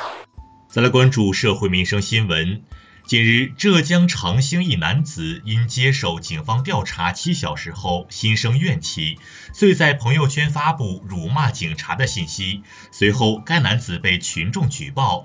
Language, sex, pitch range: Chinese, male, 100-155 Hz